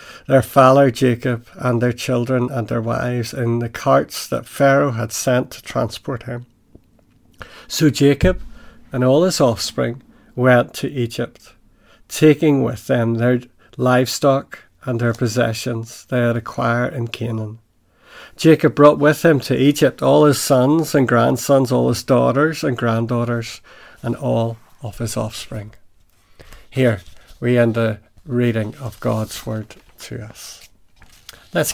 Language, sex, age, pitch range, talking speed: English, male, 60-79, 115-135 Hz, 140 wpm